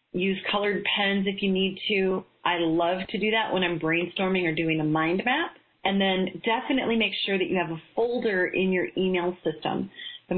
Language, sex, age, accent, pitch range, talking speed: English, female, 30-49, American, 170-215 Hz, 200 wpm